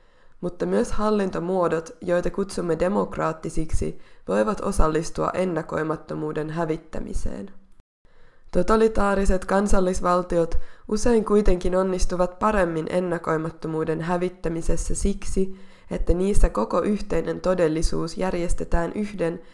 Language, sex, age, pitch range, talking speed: Finnish, female, 20-39, 170-200 Hz, 80 wpm